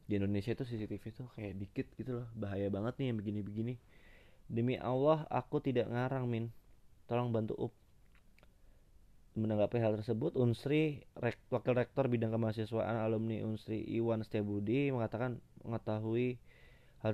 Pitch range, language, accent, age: 105-125 Hz, Indonesian, native, 20-39